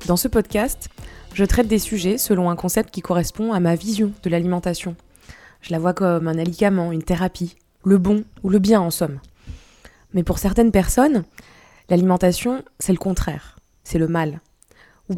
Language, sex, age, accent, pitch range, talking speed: French, female, 20-39, French, 175-210 Hz, 175 wpm